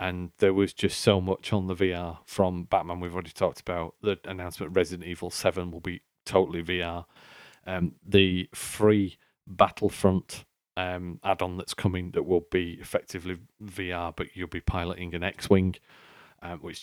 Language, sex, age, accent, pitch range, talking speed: English, male, 40-59, British, 90-100 Hz, 155 wpm